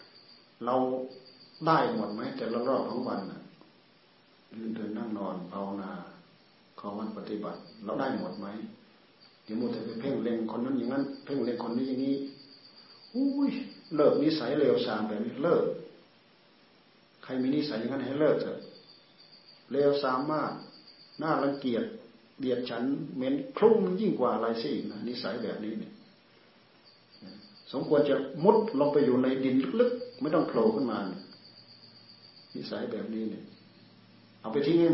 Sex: male